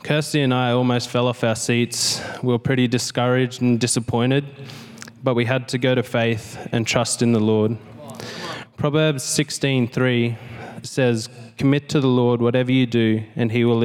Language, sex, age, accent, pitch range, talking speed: English, male, 20-39, Australian, 115-130 Hz, 170 wpm